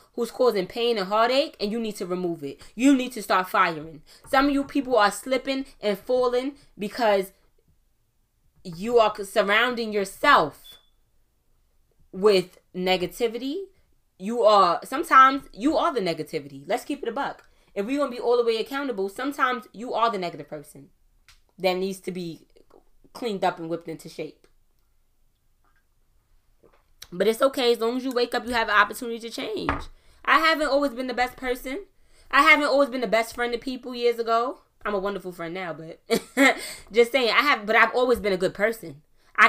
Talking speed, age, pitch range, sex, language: 180 wpm, 20-39, 180-250 Hz, female, English